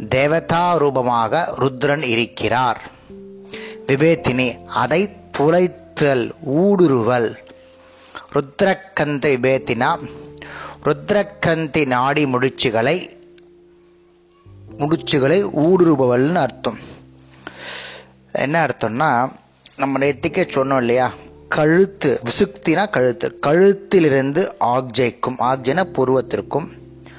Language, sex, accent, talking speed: Tamil, male, native, 55 wpm